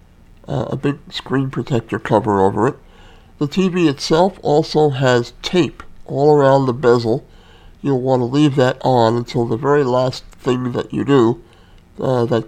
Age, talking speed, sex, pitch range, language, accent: 60-79, 165 wpm, male, 105-140 Hz, English, American